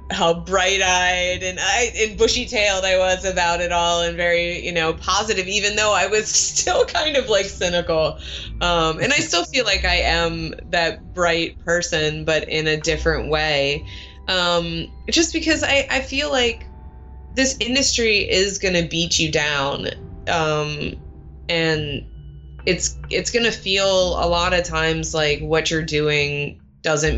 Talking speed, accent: 160 wpm, American